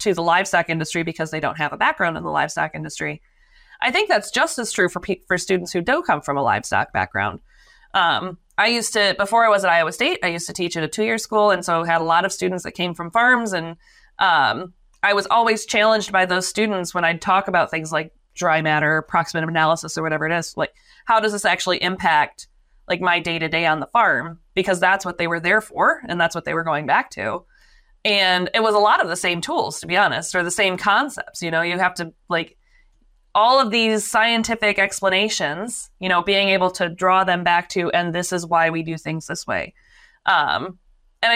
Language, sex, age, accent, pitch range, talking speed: English, female, 20-39, American, 170-215 Hz, 230 wpm